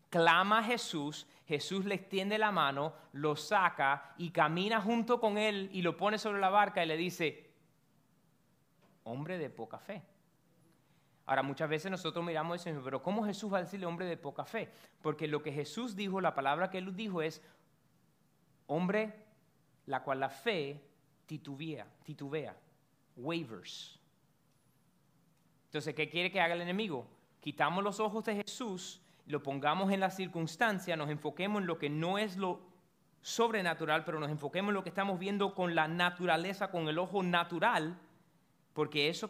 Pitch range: 145-185 Hz